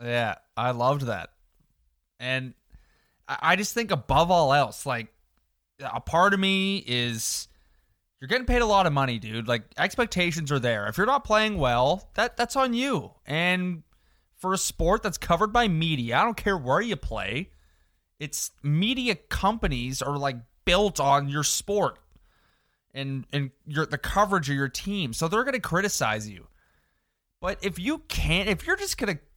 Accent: American